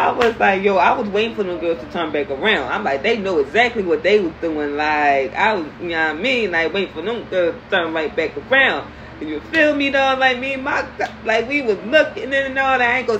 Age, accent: 20-39, American